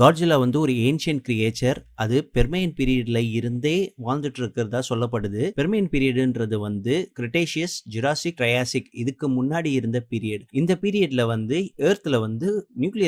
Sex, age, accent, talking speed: male, 30-49, native, 85 wpm